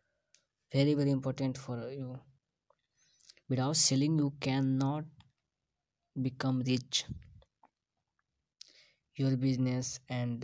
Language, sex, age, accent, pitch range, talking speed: Hindi, female, 20-39, native, 125-140 Hz, 80 wpm